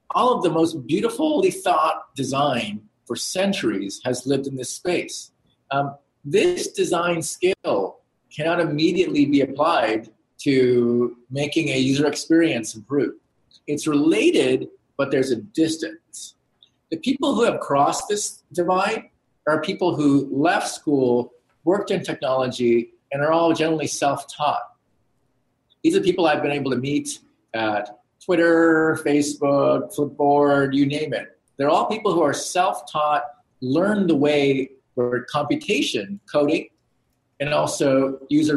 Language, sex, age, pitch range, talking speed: English, male, 40-59, 140-185 Hz, 130 wpm